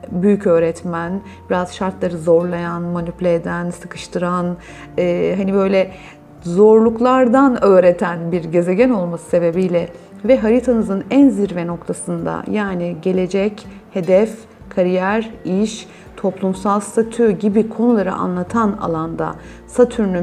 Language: Turkish